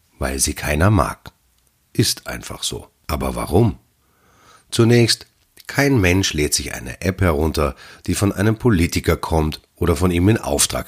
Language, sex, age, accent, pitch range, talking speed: German, male, 30-49, German, 75-100 Hz, 150 wpm